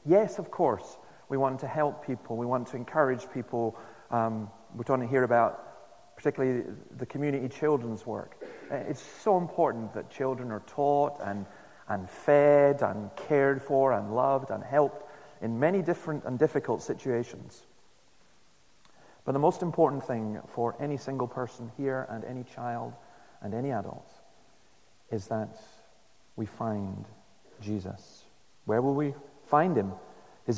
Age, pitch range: 40-59, 115-145 Hz